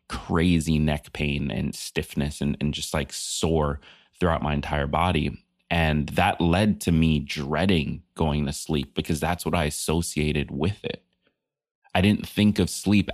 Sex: male